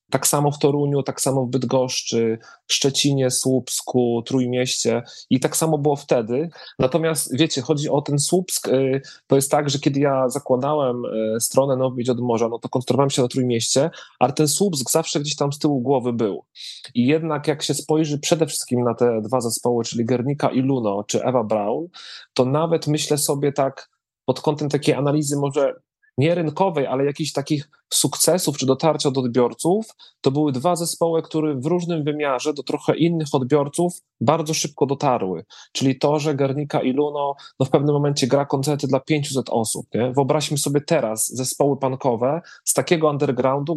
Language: Polish